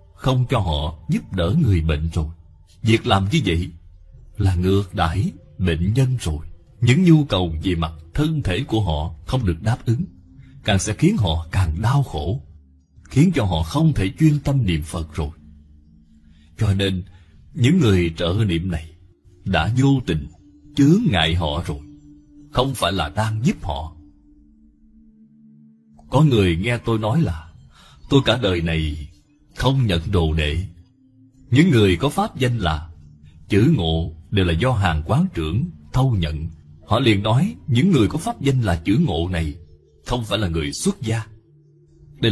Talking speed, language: 165 wpm, Vietnamese